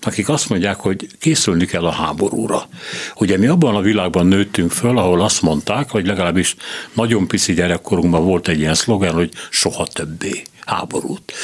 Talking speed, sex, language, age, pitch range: 165 wpm, male, Hungarian, 60-79, 90-120 Hz